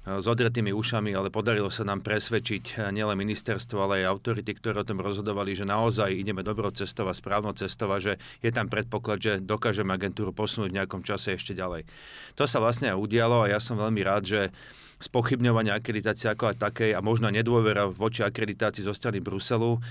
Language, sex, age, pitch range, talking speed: Slovak, male, 40-59, 100-115 Hz, 190 wpm